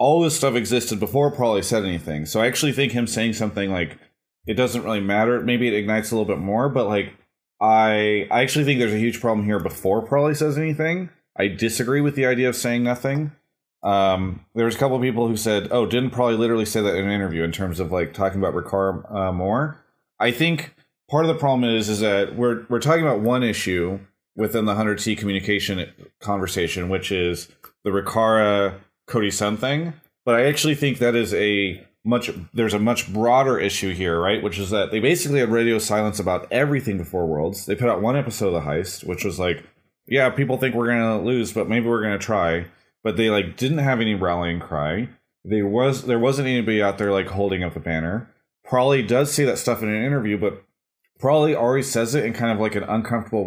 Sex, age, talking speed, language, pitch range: male, 30-49, 220 wpm, English, 100-125 Hz